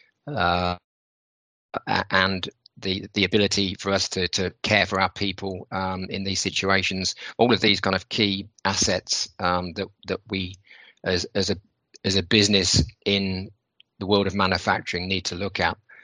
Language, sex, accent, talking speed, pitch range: English, male, British, 160 wpm, 95-105 Hz